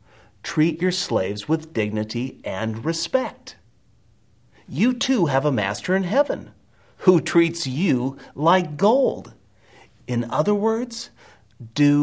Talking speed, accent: 115 wpm, American